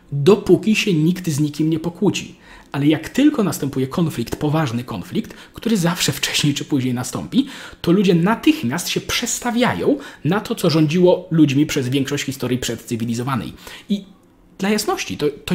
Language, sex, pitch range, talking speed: Polish, male, 130-185 Hz, 150 wpm